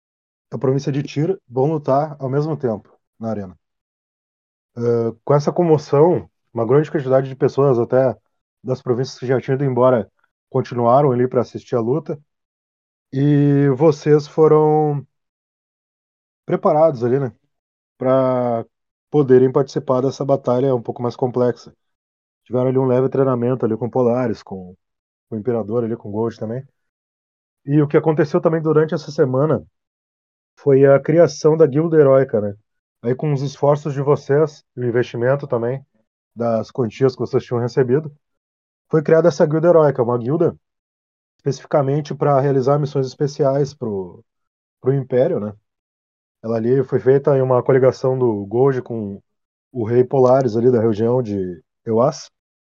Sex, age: male, 20-39